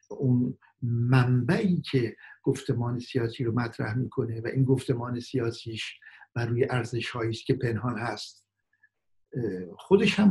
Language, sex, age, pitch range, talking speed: Persian, male, 50-69, 125-175 Hz, 115 wpm